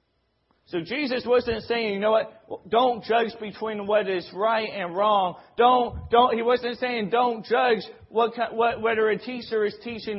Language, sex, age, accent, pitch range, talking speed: English, male, 40-59, American, 190-235 Hz, 170 wpm